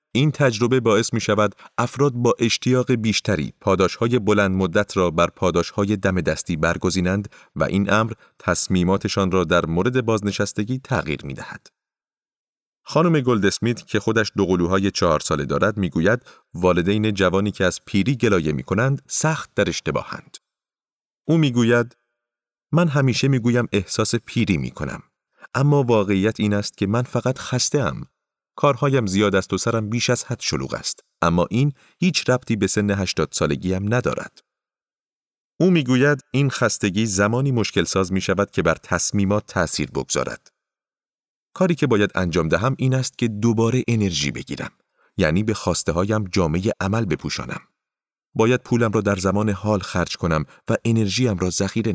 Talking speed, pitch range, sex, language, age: 155 wpm, 95-125 Hz, male, Persian, 40-59